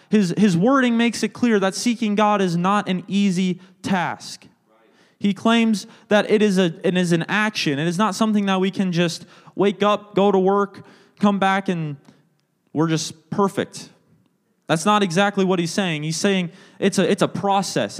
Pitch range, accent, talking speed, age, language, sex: 175-210 Hz, American, 185 wpm, 20-39, English, male